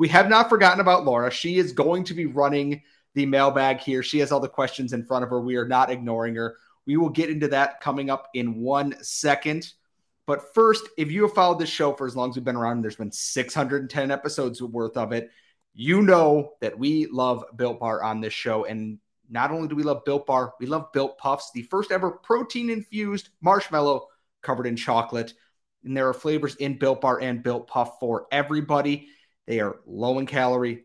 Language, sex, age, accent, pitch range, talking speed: English, male, 30-49, American, 120-150 Hz, 210 wpm